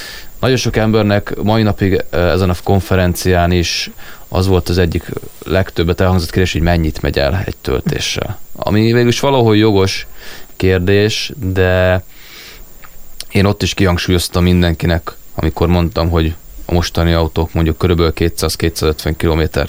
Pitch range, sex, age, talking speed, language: 85-95 Hz, male, 20-39, 130 wpm, Hungarian